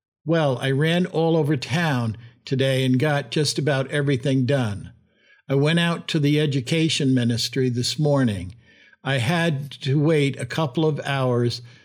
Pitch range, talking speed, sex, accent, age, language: 125-150 Hz, 150 wpm, male, American, 60-79, English